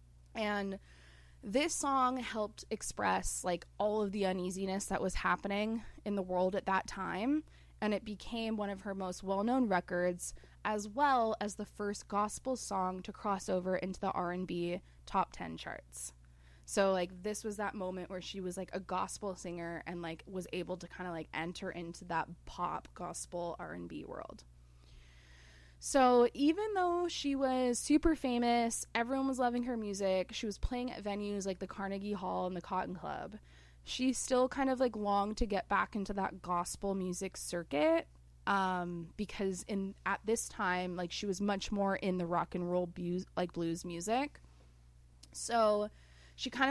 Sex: female